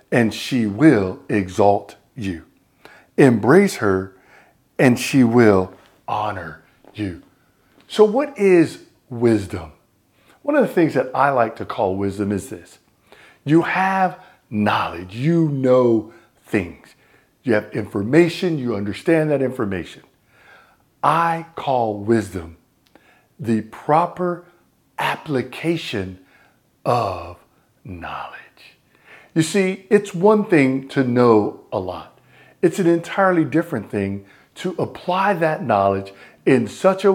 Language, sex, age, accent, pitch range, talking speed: English, male, 50-69, American, 100-165 Hz, 115 wpm